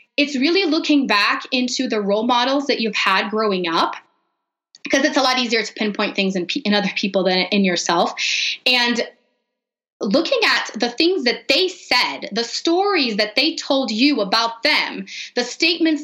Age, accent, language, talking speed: 20-39, American, English, 170 wpm